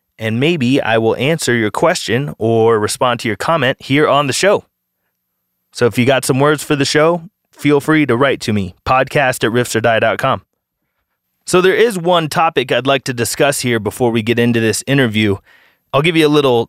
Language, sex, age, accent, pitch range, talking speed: English, male, 30-49, American, 115-150 Hz, 200 wpm